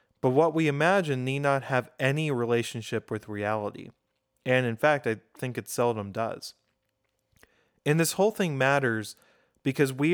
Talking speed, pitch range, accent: 155 wpm, 115-150 Hz, American